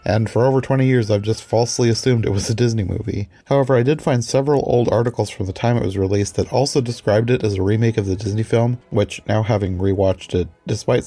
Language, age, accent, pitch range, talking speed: English, 30-49, American, 100-130 Hz, 240 wpm